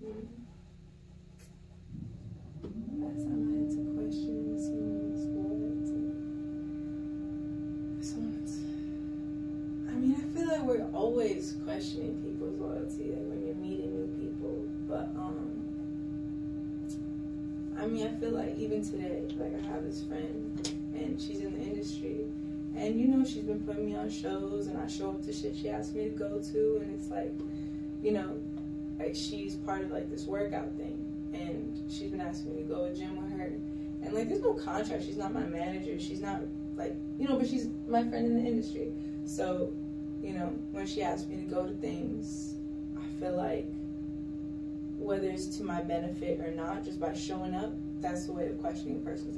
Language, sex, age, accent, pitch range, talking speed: English, female, 20-39, American, 105-150 Hz, 170 wpm